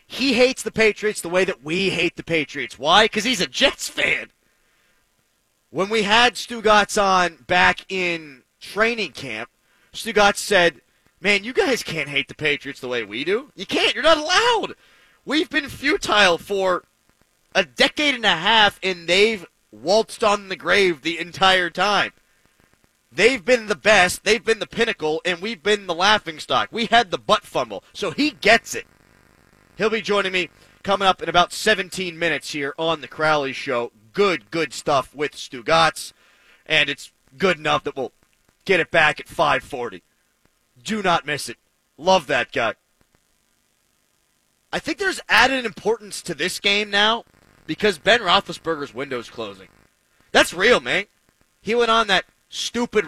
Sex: male